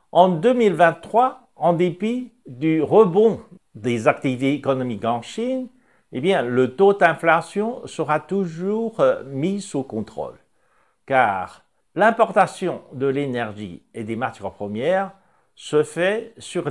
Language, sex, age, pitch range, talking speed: French, male, 60-79, 140-200 Hz, 115 wpm